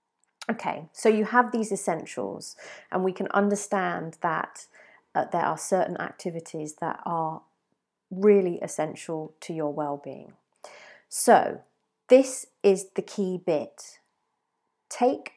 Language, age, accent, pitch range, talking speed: English, 40-59, British, 170-205 Hz, 115 wpm